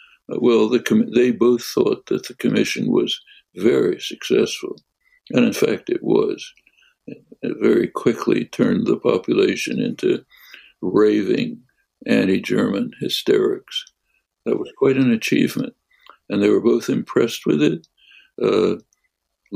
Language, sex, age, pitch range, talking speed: French, male, 60-79, 245-410 Hz, 120 wpm